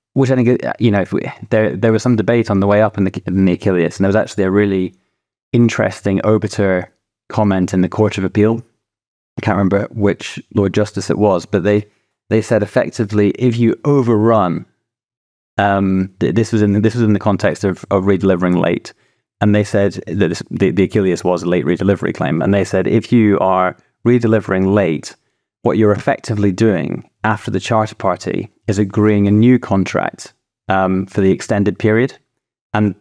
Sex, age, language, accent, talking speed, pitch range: male, 20-39, English, British, 190 wpm, 95-110 Hz